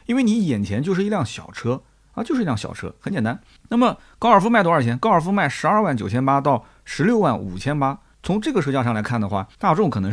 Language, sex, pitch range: Chinese, male, 110-170 Hz